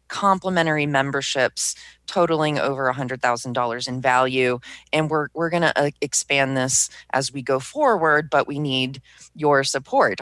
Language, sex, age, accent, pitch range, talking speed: English, female, 30-49, American, 130-155 Hz, 145 wpm